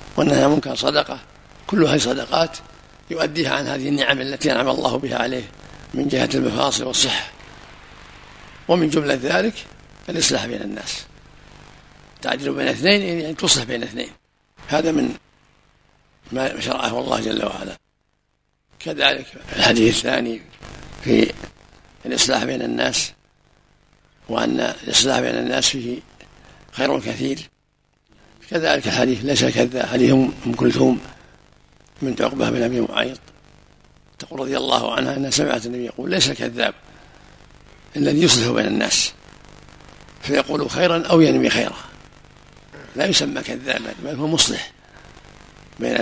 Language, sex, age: Arabic, male, 60-79